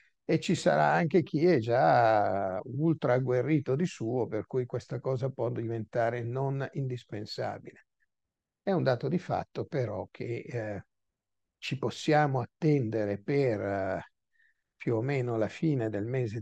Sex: male